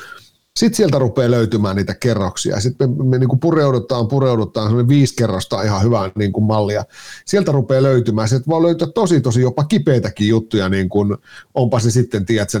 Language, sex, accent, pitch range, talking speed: Finnish, male, native, 110-130 Hz, 180 wpm